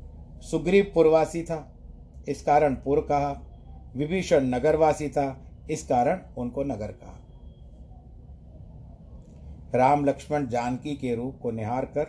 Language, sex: Hindi, male